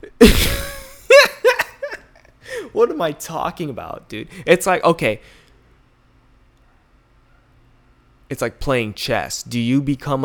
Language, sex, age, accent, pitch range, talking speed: English, male, 20-39, American, 105-125 Hz, 95 wpm